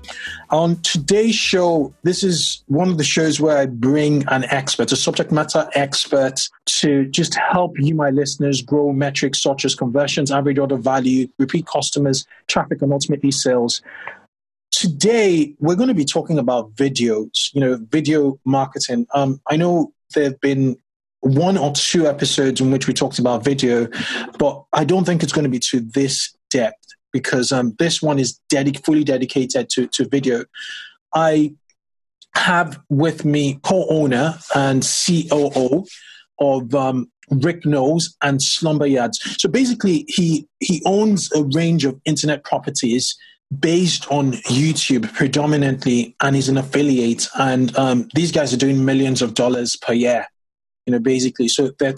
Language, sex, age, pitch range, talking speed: English, male, 20-39, 135-160 Hz, 155 wpm